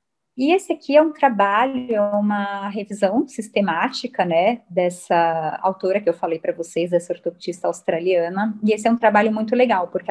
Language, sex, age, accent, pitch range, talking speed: Portuguese, female, 30-49, Brazilian, 190-240 Hz, 170 wpm